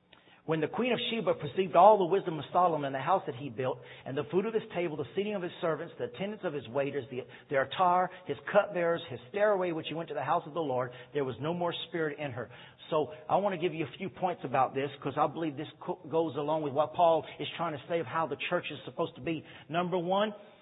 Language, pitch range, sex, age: English, 125-175 Hz, male, 50-69